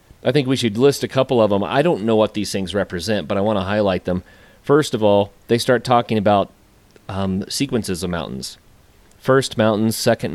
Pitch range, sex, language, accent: 95-120 Hz, male, English, American